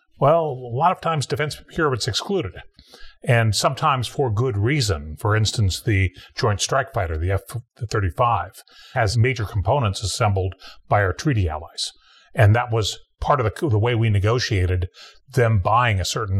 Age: 40-59